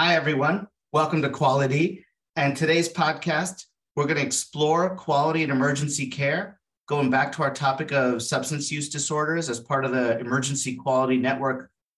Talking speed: 160 wpm